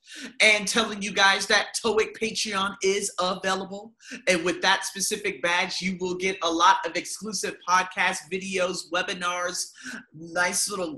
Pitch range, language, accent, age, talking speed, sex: 175-225 Hz, English, American, 30-49, 140 wpm, male